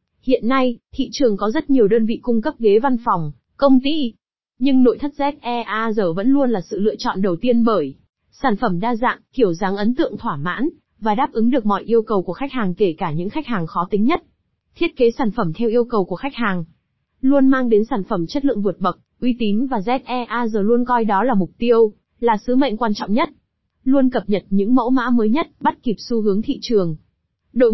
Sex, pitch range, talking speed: female, 205-260 Hz, 230 wpm